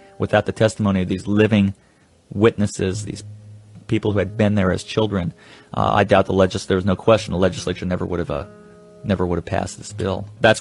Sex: male